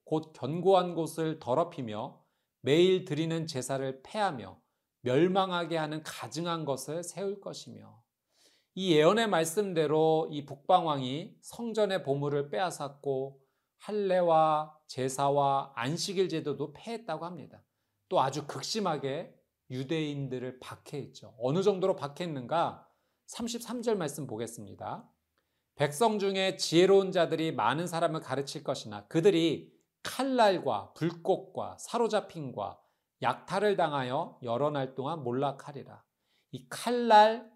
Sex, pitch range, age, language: male, 135-190 Hz, 40-59, Korean